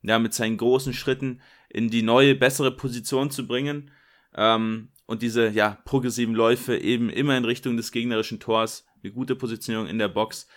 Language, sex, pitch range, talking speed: German, male, 105-130 Hz, 175 wpm